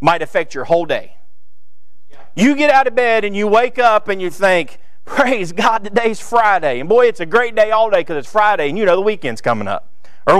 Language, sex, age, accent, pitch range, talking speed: English, male, 40-59, American, 130-210 Hz, 230 wpm